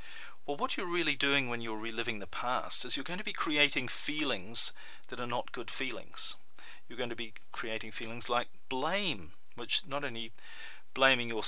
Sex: male